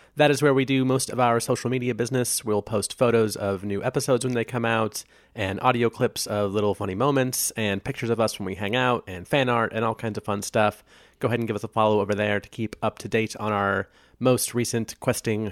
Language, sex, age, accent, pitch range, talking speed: English, male, 30-49, American, 105-135 Hz, 250 wpm